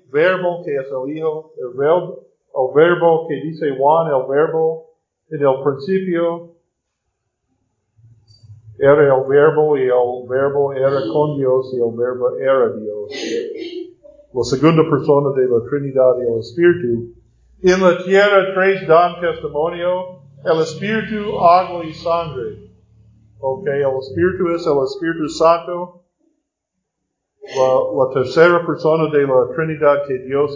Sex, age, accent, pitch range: male, 50-69, American, 140-185 Hz